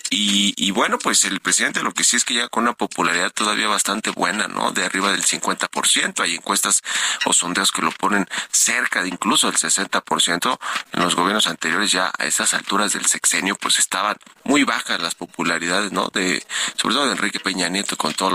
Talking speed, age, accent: 200 wpm, 40-59, Mexican